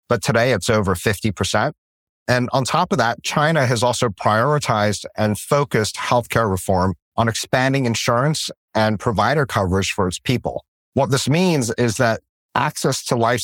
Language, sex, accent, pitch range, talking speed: English, male, American, 110-135 Hz, 155 wpm